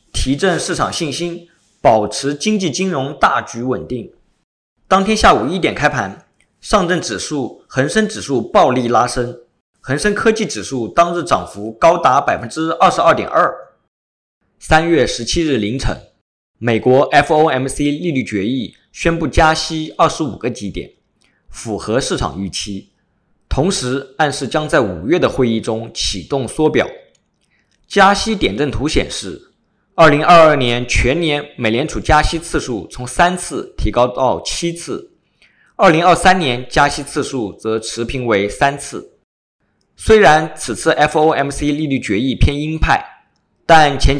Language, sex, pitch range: Chinese, male, 125-170 Hz